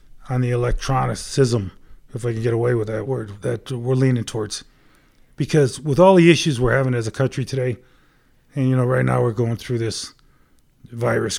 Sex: male